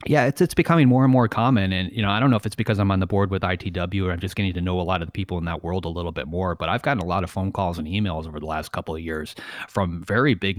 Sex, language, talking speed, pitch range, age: male, English, 340 wpm, 85-100 Hz, 30-49